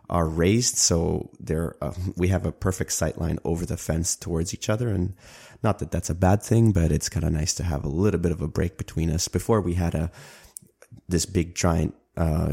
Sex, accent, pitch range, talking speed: male, Canadian, 80-95 Hz, 220 wpm